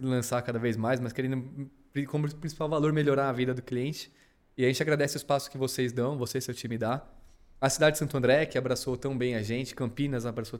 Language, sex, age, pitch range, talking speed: Portuguese, male, 20-39, 120-145 Hz, 230 wpm